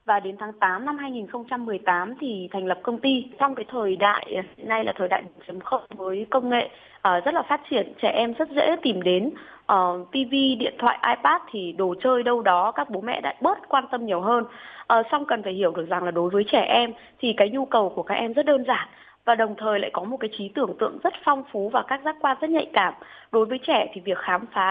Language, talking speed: Vietnamese, 250 wpm